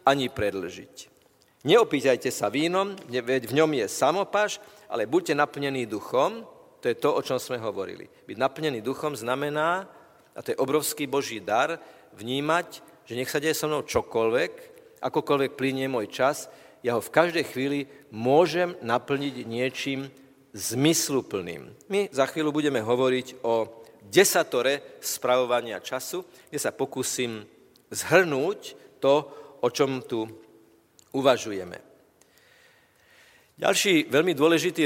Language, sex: Slovak, male